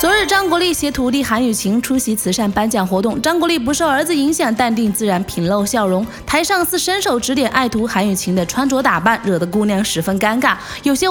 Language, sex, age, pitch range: Chinese, female, 20-39, 225-320 Hz